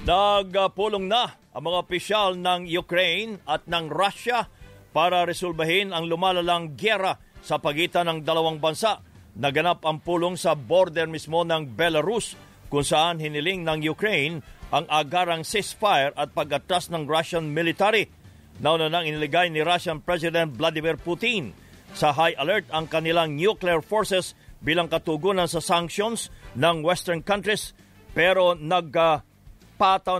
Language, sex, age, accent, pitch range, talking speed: English, male, 50-69, Filipino, 155-180 Hz, 130 wpm